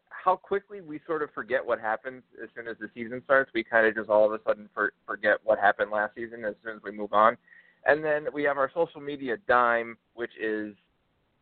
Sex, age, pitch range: male, 20-39, 105-135 Hz